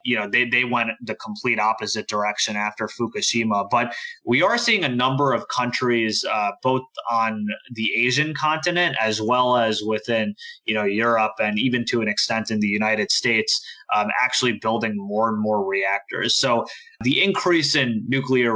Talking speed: 170 wpm